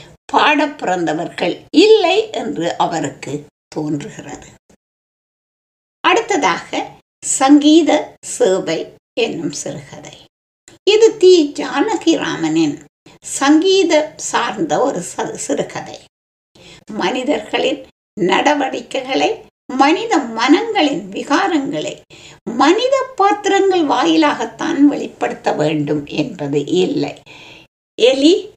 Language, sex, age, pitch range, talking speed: Tamil, female, 60-79, 265-395 Hz, 60 wpm